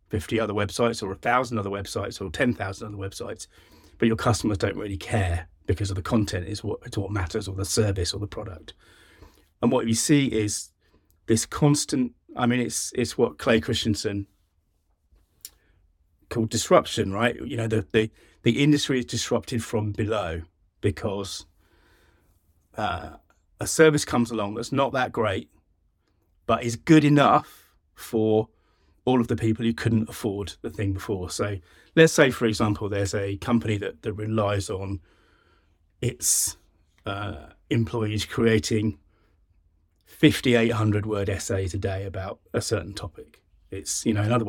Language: English